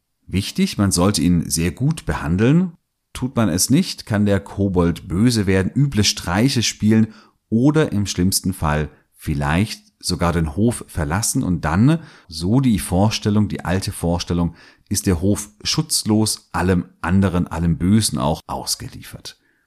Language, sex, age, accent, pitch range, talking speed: German, male, 40-59, German, 80-110 Hz, 140 wpm